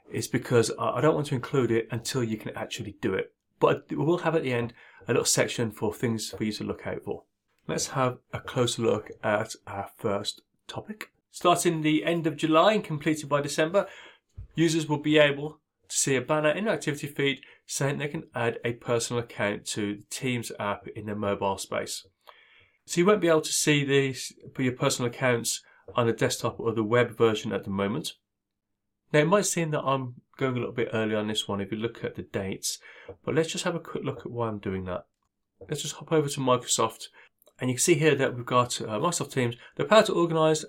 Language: English